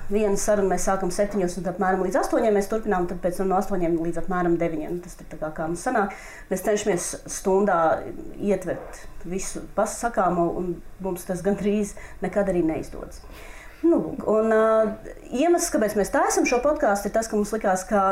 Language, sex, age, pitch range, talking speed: English, female, 30-49, 180-220 Hz, 180 wpm